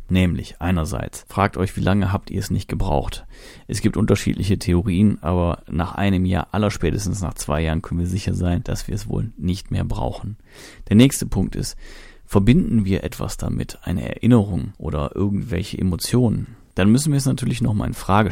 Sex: male